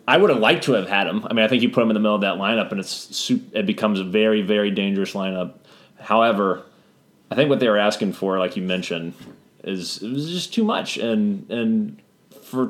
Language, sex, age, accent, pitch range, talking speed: English, male, 30-49, American, 95-125 Hz, 235 wpm